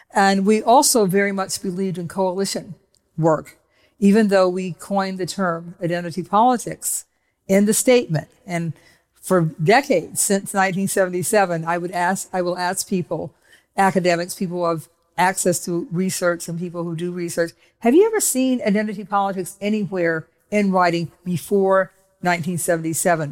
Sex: female